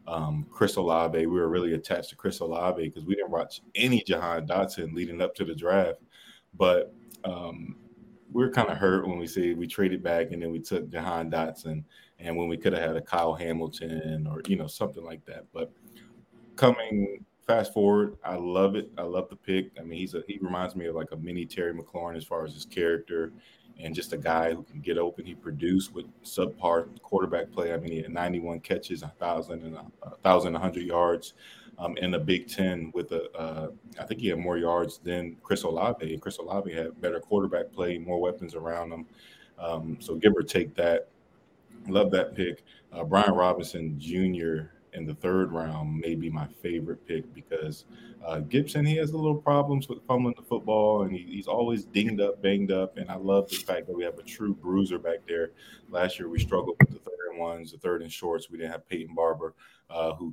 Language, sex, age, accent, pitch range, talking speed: English, male, 20-39, American, 80-95 Hz, 210 wpm